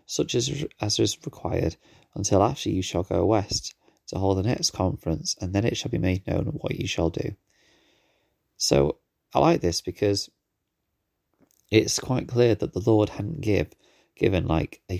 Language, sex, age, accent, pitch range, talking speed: English, male, 30-49, British, 85-100 Hz, 170 wpm